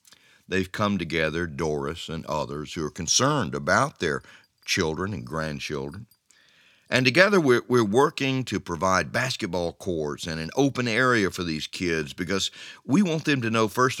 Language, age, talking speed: English, 50-69, 160 wpm